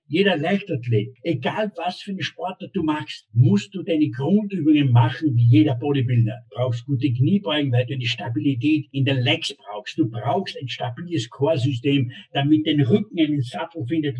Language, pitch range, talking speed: German, 120-155 Hz, 170 wpm